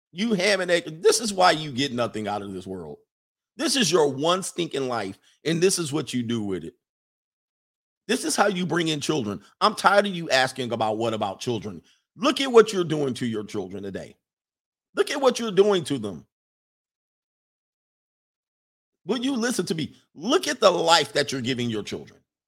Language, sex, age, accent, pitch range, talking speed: English, male, 50-69, American, 135-205 Hz, 200 wpm